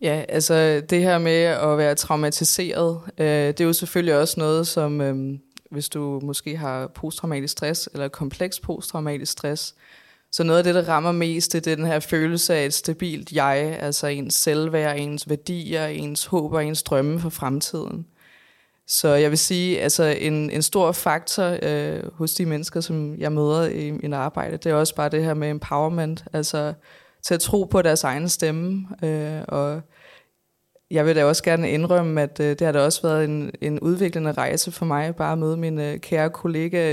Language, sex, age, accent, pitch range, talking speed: Danish, female, 20-39, native, 150-170 Hz, 190 wpm